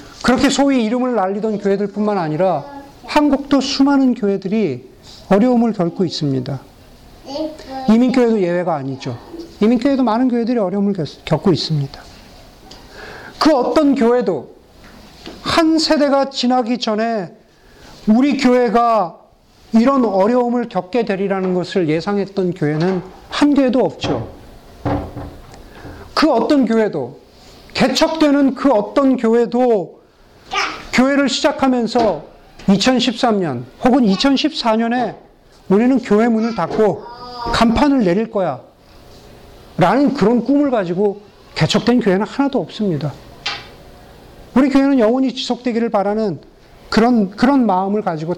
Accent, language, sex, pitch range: native, Korean, male, 195-260 Hz